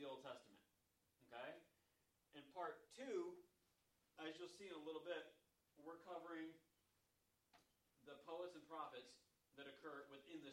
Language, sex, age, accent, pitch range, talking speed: English, male, 30-49, American, 115-155 Hz, 130 wpm